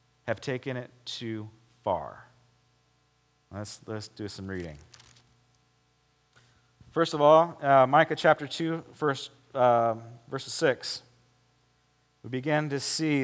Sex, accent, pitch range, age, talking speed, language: male, American, 120-155 Hz, 30-49, 115 wpm, English